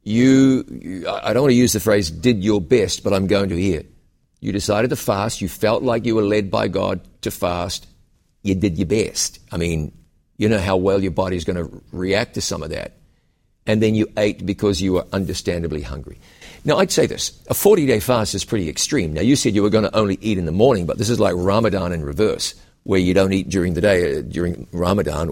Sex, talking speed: male, 235 wpm